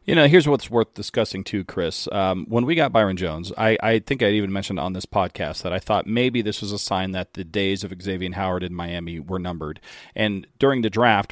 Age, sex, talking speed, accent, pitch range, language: 40-59, male, 240 wpm, American, 95-110 Hz, English